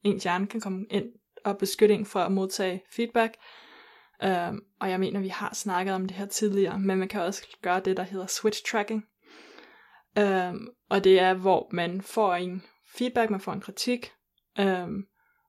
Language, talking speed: Danish, 180 wpm